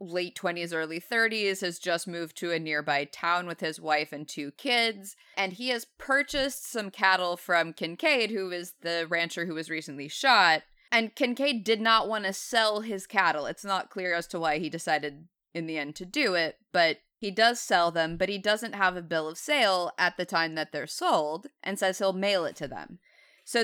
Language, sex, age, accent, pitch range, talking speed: English, female, 20-39, American, 165-205 Hz, 210 wpm